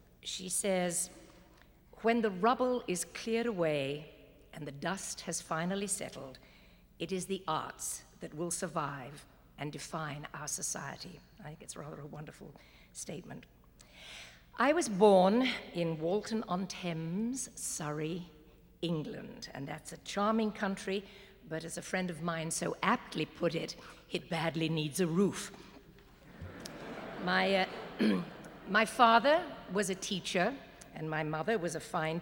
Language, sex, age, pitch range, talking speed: English, female, 60-79, 160-205 Hz, 135 wpm